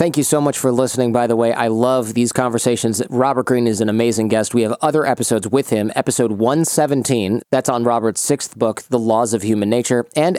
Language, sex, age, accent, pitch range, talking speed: English, male, 30-49, American, 115-145 Hz, 220 wpm